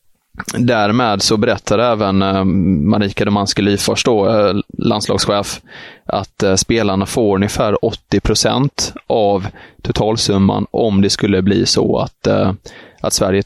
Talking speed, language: 105 wpm, Swedish